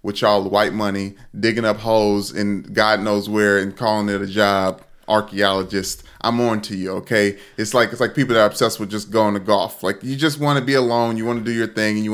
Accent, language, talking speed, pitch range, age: American, English, 240 wpm, 105-135 Hz, 30-49